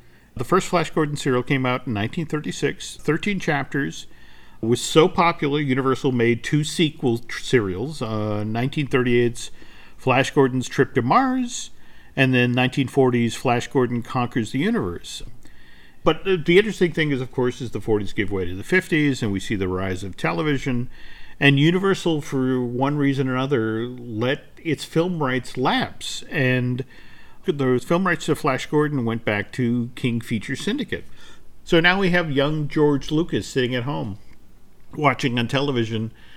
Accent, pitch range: American, 120-150 Hz